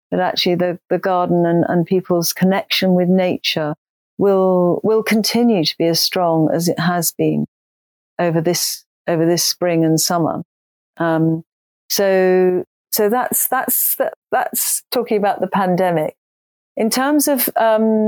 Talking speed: 145 wpm